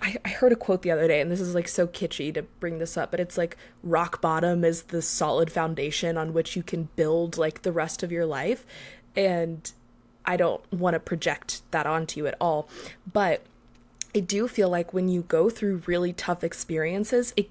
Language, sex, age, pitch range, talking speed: English, female, 20-39, 165-190 Hz, 210 wpm